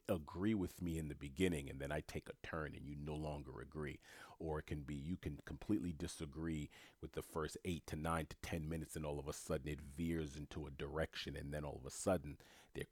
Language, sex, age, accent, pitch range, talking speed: English, male, 40-59, American, 75-95 Hz, 235 wpm